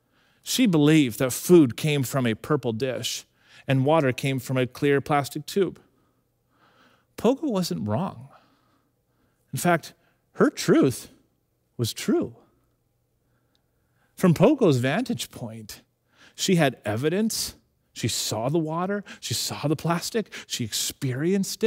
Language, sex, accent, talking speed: English, male, American, 120 wpm